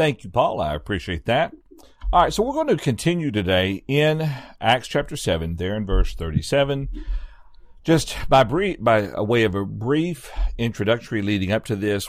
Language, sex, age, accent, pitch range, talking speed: English, male, 50-69, American, 95-130 Hz, 185 wpm